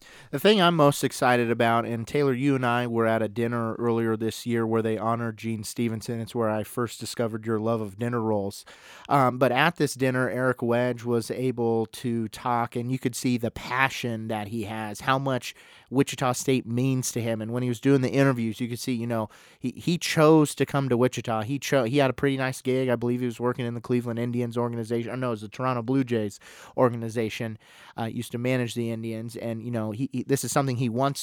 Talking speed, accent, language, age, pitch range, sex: 235 wpm, American, English, 30-49, 115-130 Hz, male